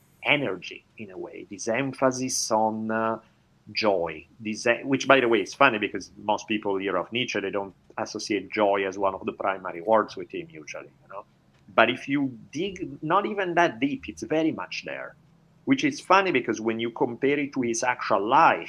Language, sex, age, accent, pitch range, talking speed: English, male, 50-69, Italian, 100-135 Hz, 200 wpm